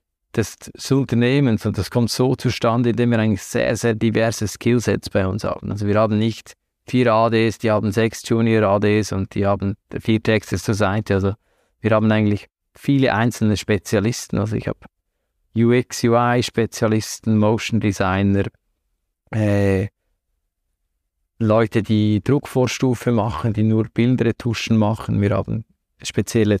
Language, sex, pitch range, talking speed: German, male, 105-115 Hz, 140 wpm